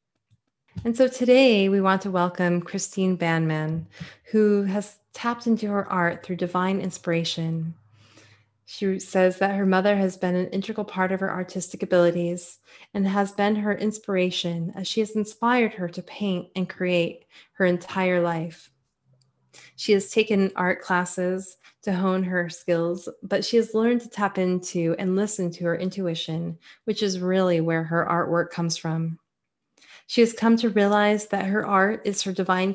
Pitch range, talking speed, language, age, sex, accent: 175-200 Hz, 165 wpm, English, 20-39, female, American